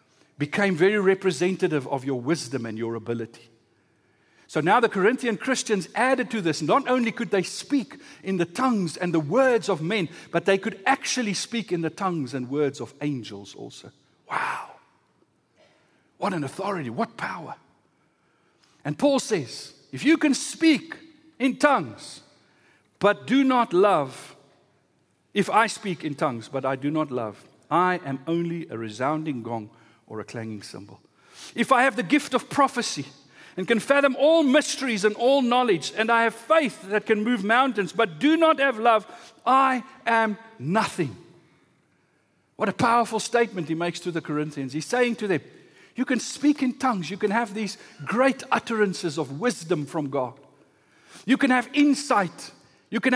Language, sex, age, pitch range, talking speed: English, male, 60-79, 160-260 Hz, 165 wpm